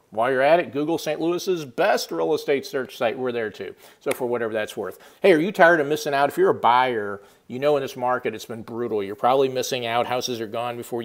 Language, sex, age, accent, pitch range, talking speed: English, male, 50-69, American, 120-145 Hz, 255 wpm